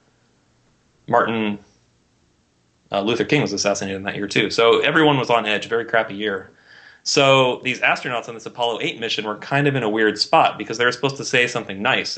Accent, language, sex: American, English, male